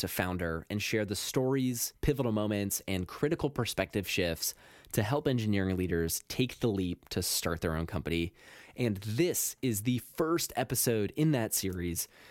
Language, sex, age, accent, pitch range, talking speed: English, male, 20-39, American, 85-120 Hz, 160 wpm